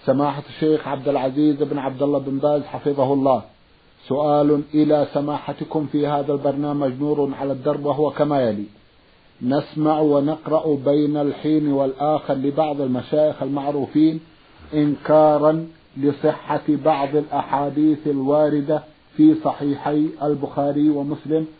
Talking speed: 110 wpm